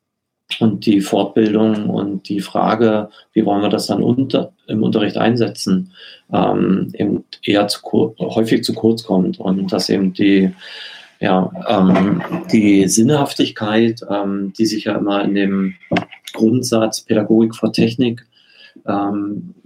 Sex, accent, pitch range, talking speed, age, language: male, German, 100-115 Hz, 135 wpm, 30-49, German